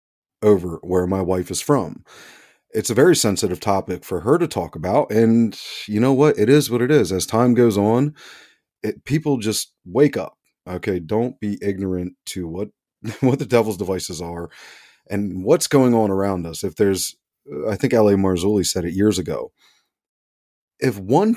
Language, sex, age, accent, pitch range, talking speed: English, male, 30-49, American, 95-130 Hz, 175 wpm